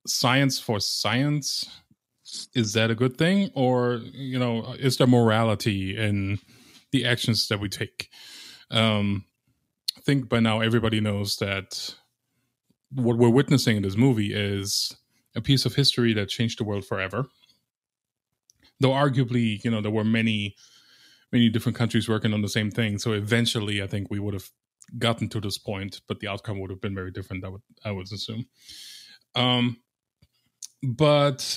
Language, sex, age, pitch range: English, male, 20-39, 105-125 Hz